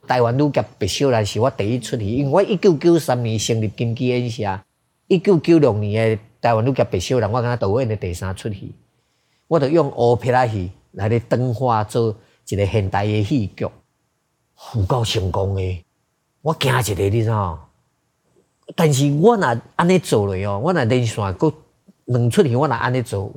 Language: Chinese